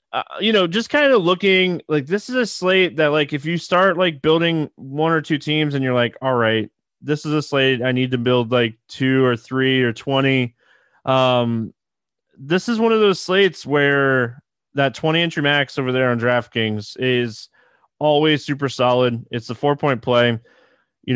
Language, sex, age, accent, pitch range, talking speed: English, male, 20-39, American, 125-160 Hz, 195 wpm